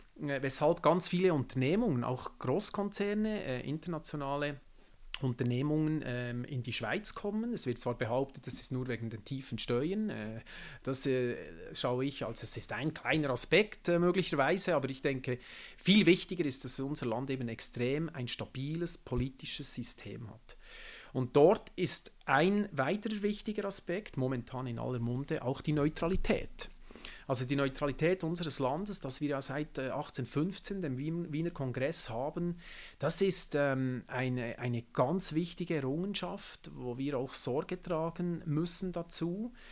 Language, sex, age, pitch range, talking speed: German, male, 40-59, 125-170 Hz, 150 wpm